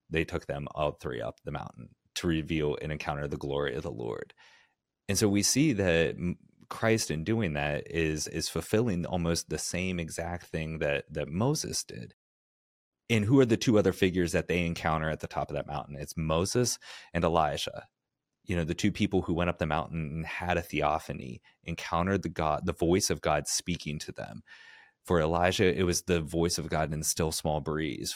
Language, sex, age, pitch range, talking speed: English, male, 30-49, 75-90 Hz, 200 wpm